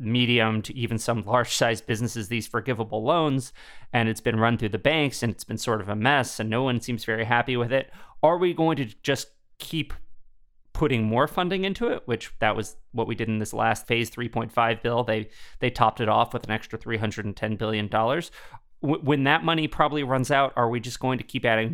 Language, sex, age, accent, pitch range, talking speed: English, male, 30-49, American, 110-130 Hz, 215 wpm